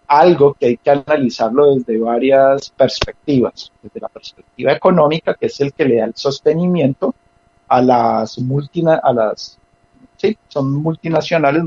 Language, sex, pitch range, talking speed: Spanish, male, 125-180 Hz, 145 wpm